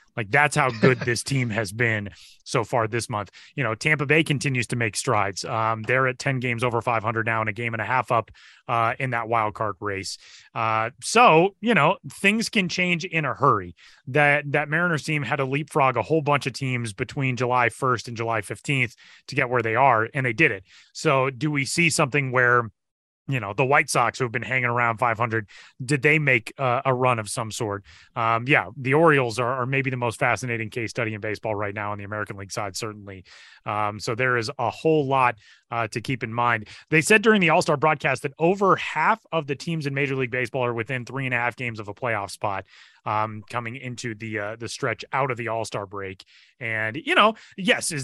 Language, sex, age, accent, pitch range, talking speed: English, male, 30-49, American, 115-155 Hz, 225 wpm